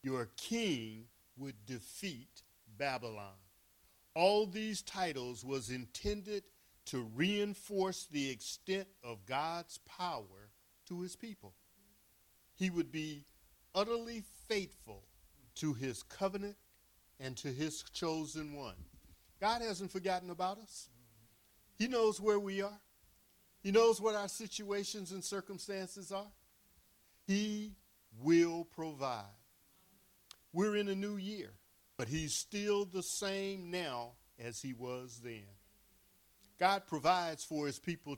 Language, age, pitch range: English, 50-69, 115-185 Hz